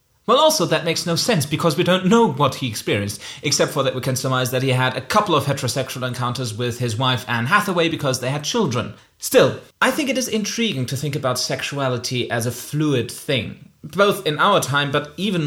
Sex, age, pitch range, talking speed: male, 30-49, 130-185 Hz, 215 wpm